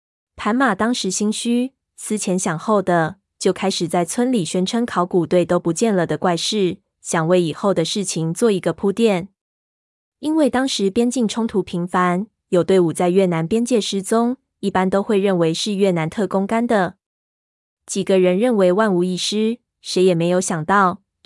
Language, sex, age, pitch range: Chinese, female, 20-39, 180-220 Hz